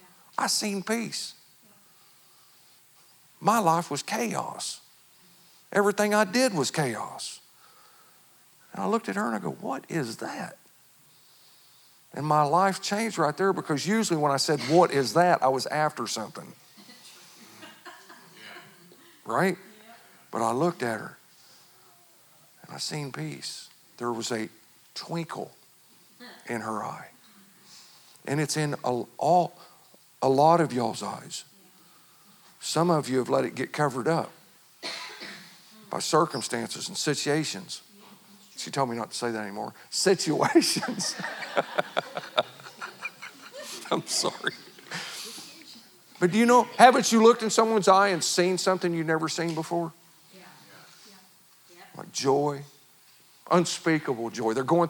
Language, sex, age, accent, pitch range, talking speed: English, male, 50-69, American, 140-195 Hz, 125 wpm